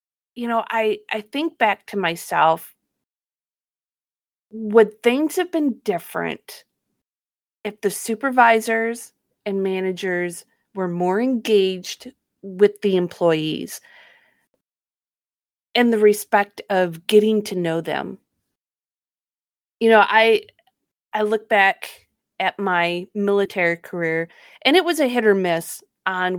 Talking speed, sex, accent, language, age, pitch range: 115 wpm, female, American, English, 30-49, 180-230 Hz